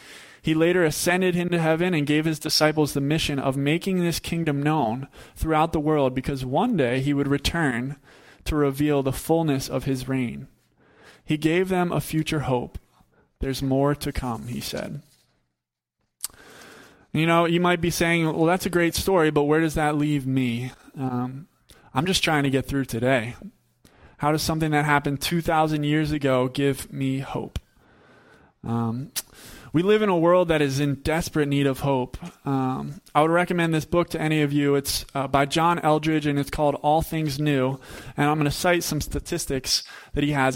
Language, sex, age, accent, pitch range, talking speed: English, male, 20-39, American, 135-160 Hz, 180 wpm